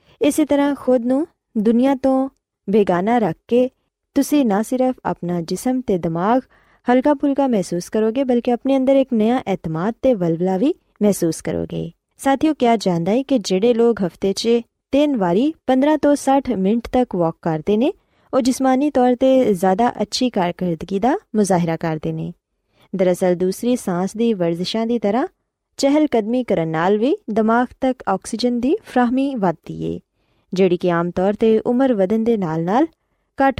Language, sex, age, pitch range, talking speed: Punjabi, female, 20-39, 185-260 Hz, 160 wpm